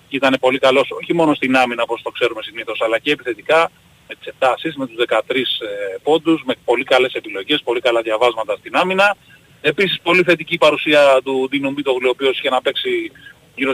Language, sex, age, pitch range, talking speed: Greek, male, 30-49, 130-165 Hz, 190 wpm